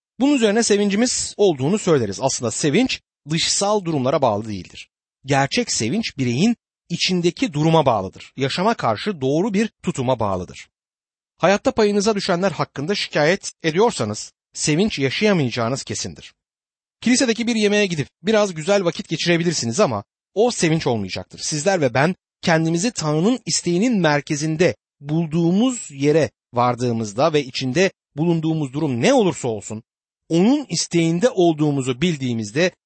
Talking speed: 120 wpm